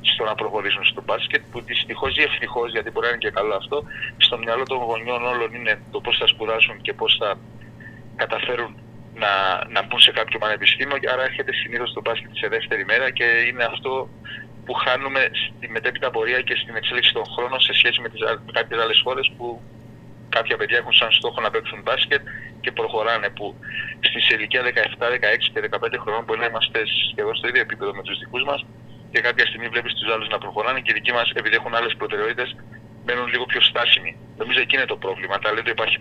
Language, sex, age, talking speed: Greek, male, 30-49, 205 wpm